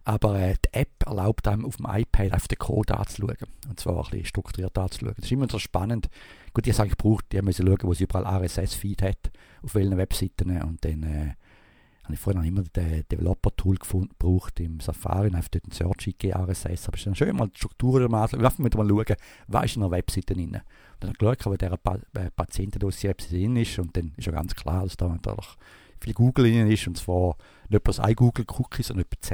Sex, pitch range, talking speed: male, 90-110 Hz, 225 wpm